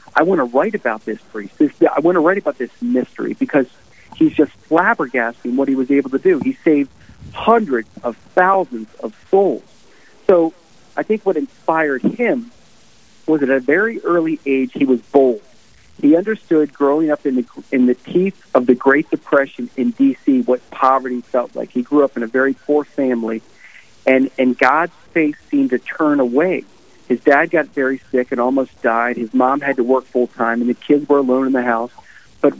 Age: 40-59